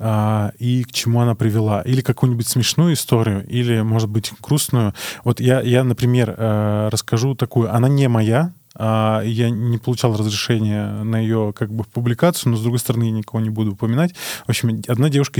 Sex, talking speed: male, 170 wpm